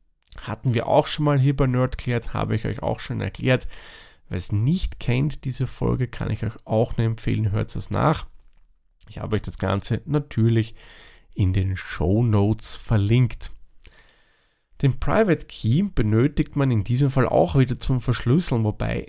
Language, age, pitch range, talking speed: German, 30-49, 105-130 Hz, 170 wpm